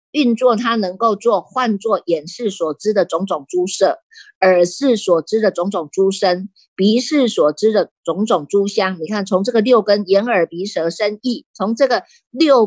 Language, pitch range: Chinese, 180-235 Hz